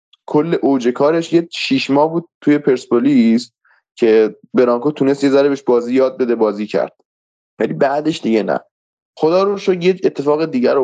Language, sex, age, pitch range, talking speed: Persian, male, 20-39, 110-160 Hz, 165 wpm